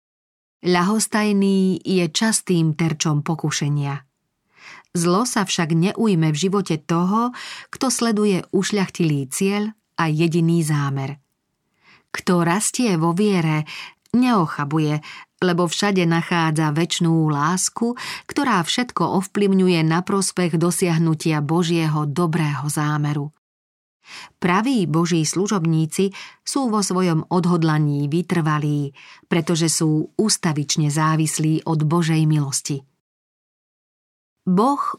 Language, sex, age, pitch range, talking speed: Slovak, female, 40-59, 155-190 Hz, 95 wpm